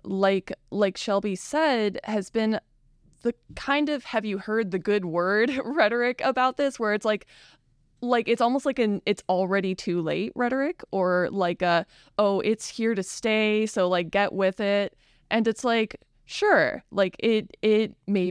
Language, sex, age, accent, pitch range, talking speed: English, female, 20-39, American, 180-225 Hz, 170 wpm